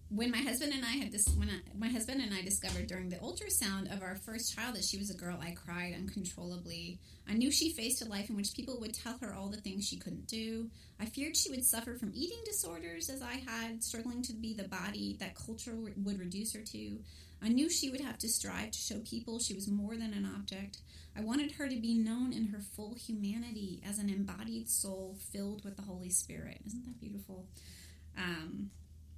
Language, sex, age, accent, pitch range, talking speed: English, female, 30-49, American, 180-230 Hz, 220 wpm